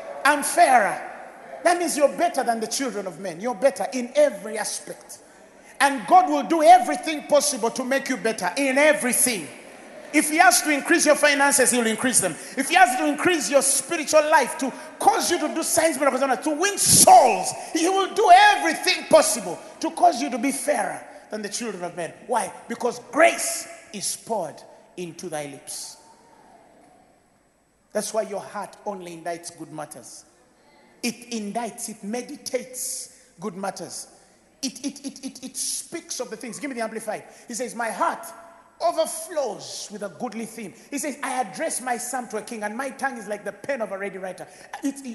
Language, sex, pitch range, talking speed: English, male, 230-320 Hz, 180 wpm